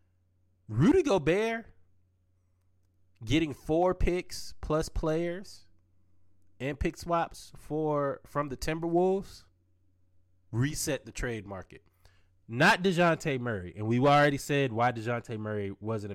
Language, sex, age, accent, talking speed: English, male, 20-39, American, 110 wpm